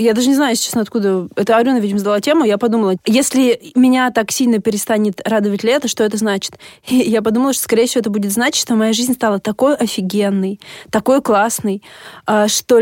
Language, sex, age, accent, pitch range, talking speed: Russian, female, 20-39, native, 205-245 Hz, 185 wpm